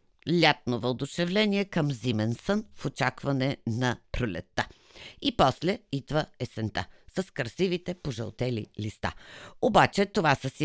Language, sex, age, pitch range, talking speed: Bulgarian, female, 50-69, 115-170 Hz, 120 wpm